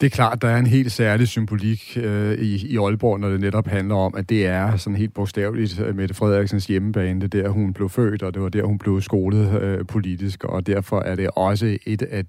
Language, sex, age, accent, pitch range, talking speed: Danish, male, 40-59, native, 95-115 Hz, 240 wpm